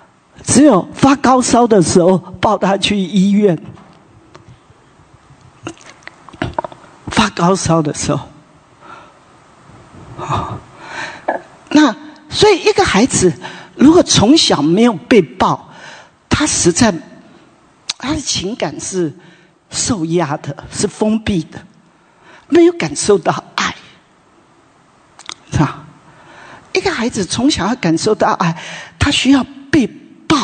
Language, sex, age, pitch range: English, male, 50-69, 175-280 Hz